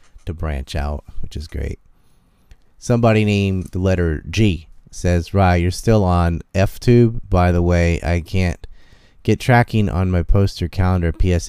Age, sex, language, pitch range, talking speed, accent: 30-49, male, English, 80-95 Hz, 155 wpm, American